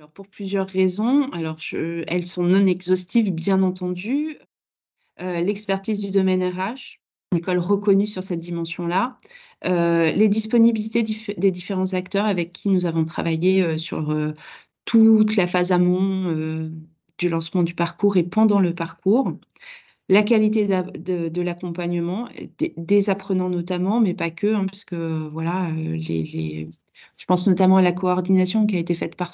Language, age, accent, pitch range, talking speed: French, 30-49, French, 170-200 Hz, 160 wpm